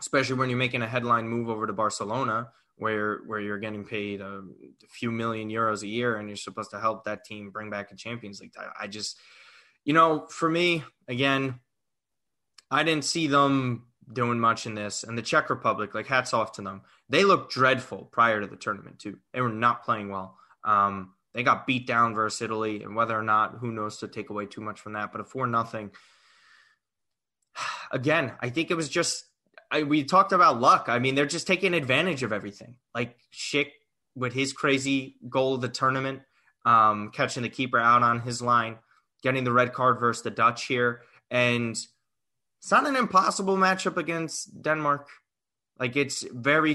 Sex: male